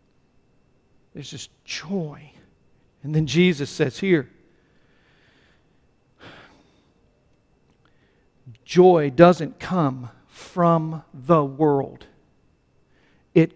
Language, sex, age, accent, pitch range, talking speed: English, male, 50-69, American, 135-185 Hz, 65 wpm